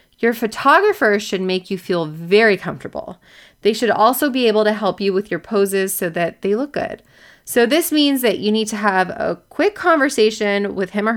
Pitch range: 185-240 Hz